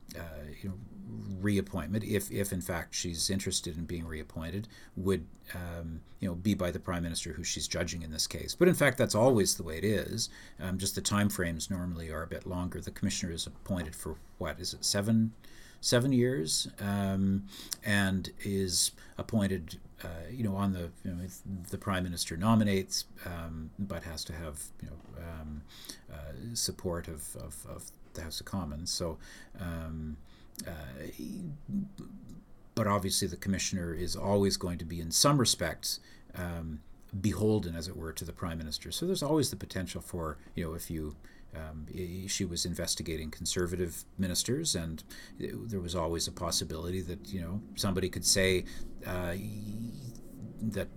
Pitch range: 85-100 Hz